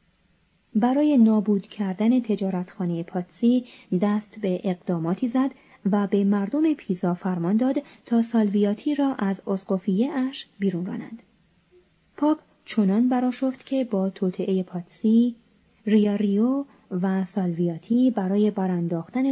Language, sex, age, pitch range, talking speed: Persian, female, 30-49, 180-235 Hz, 110 wpm